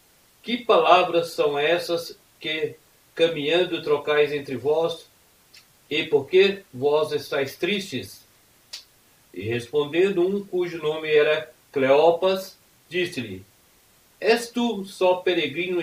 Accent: Brazilian